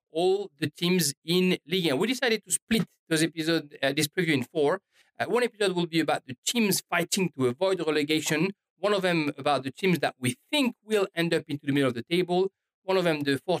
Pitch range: 145-185 Hz